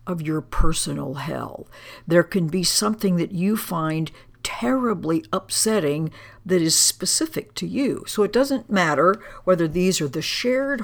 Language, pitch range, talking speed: English, 150-200 Hz, 150 wpm